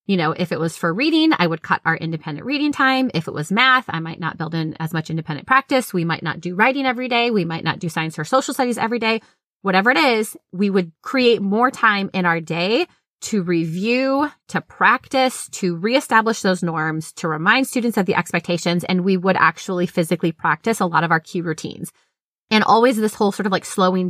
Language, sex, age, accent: English, female, 20-39, American